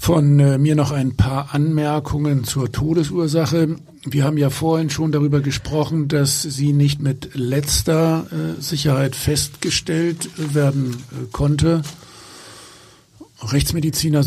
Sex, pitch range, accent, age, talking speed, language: male, 130-155 Hz, German, 50-69, 105 wpm, German